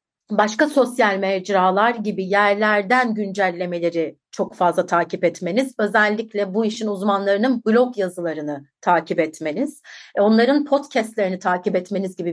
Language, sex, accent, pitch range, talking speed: Turkish, female, native, 190-240 Hz, 110 wpm